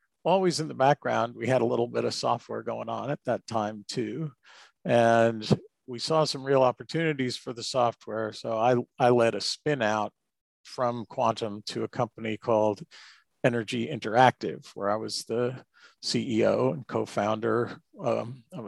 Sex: male